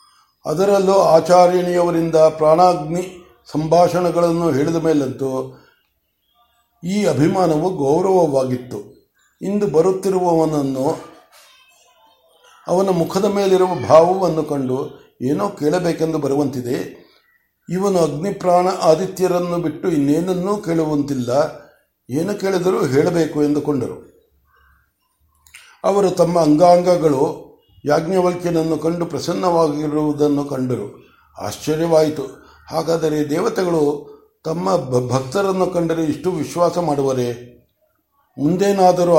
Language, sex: Kannada, male